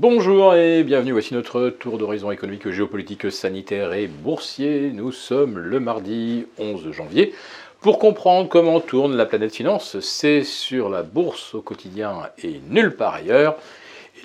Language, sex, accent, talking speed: French, male, French, 145 wpm